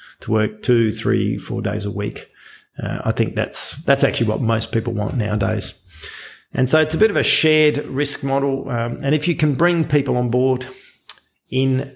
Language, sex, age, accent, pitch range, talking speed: English, male, 50-69, Australian, 110-135 Hz, 195 wpm